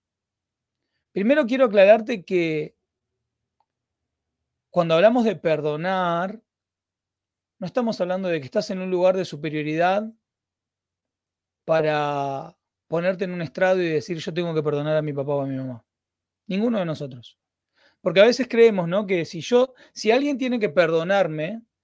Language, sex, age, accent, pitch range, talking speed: Spanish, male, 30-49, Argentinian, 150-210 Hz, 140 wpm